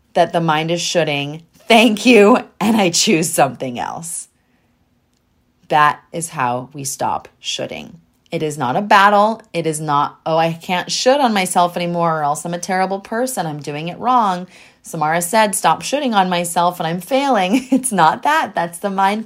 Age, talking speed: 30-49, 180 wpm